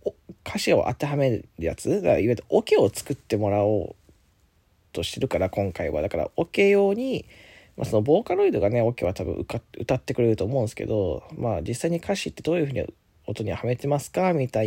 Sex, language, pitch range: male, Japanese, 95-155 Hz